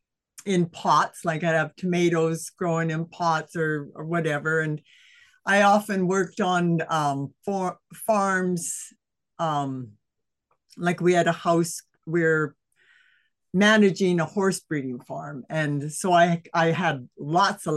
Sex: female